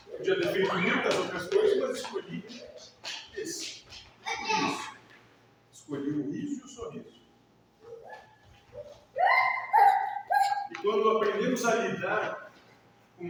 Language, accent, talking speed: Portuguese, Brazilian, 100 wpm